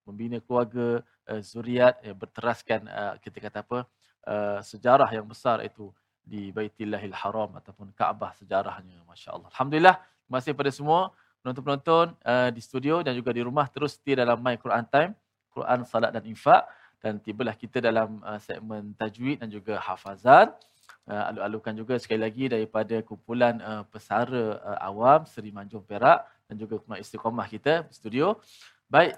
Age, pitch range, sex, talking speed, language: 20-39, 110-145 Hz, male, 140 wpm, Malayalam